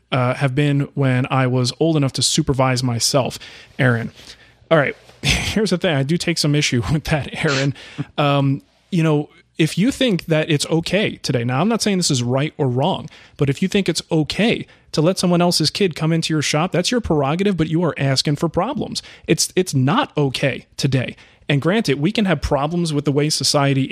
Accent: American